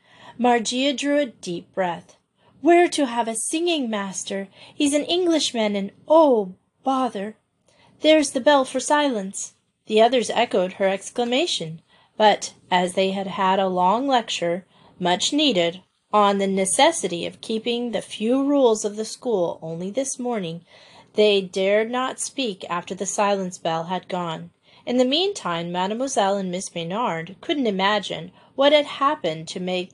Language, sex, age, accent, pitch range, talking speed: English, female, 30-49, American, 185-250 Hz, 145 wpm